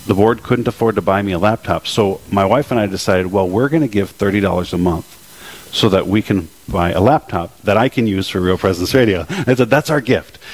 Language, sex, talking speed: English, male, 245 wpm